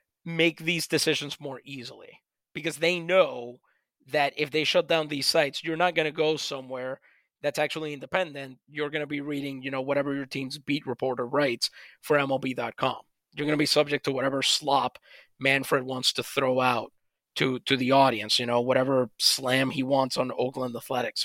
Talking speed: 185 wpm